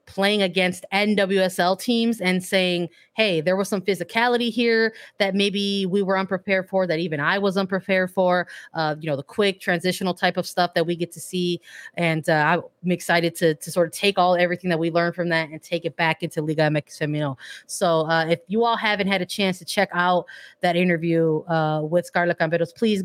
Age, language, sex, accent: 20-39, English, female, American